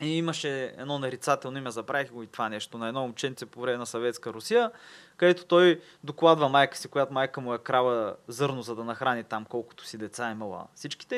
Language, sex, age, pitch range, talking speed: Bulgarian, male, 20-39, 125-175 Hz, 205 wpm